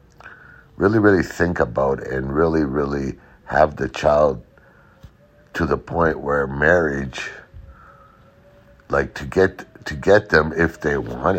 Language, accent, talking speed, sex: English, American, 125 wpm, male